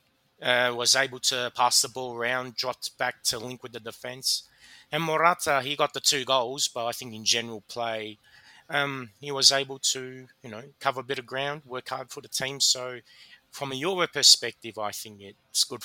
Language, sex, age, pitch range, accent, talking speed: English, male, 30-49, 110-130 Hz, Australian, 205 wpm